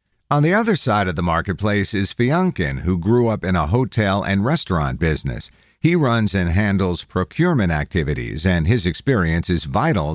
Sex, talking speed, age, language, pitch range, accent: male, 170 wpm, 50-69, English, 90-130 Hz, American